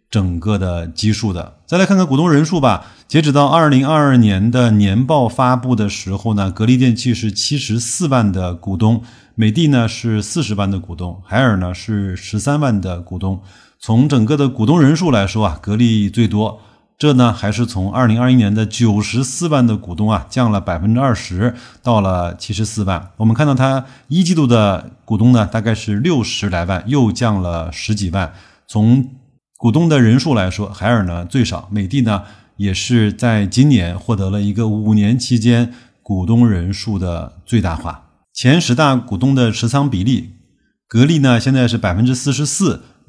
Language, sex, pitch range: Chinese, male, 100-125 Hz